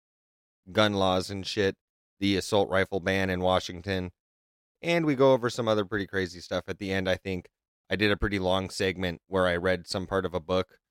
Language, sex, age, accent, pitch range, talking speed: English, male, 30-49, American, 95-110 Hz, 210 wpm